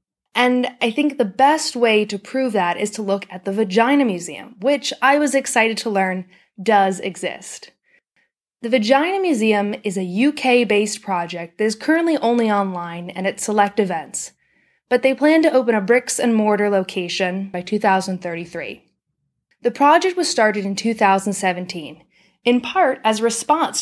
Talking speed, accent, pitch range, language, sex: 155 wpm, American, 190-245 Hz, English, female